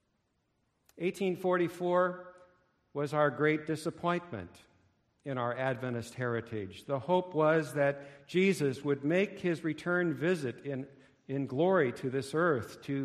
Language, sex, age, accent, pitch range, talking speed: English, male, 50-69, American, 130-180 Hz, 120 wpm